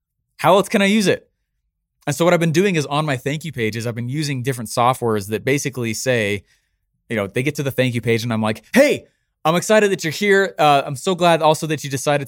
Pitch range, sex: 125-160 Hz, male